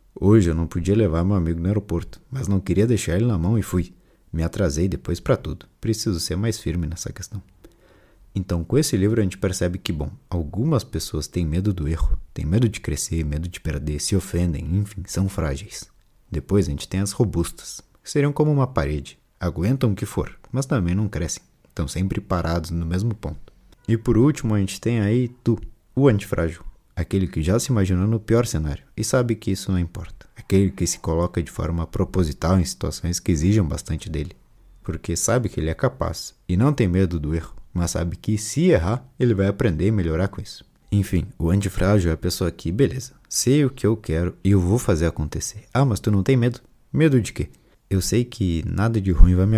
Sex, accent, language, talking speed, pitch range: male, Brazilian, Portuguese, 215 wpm, 85-110 Hz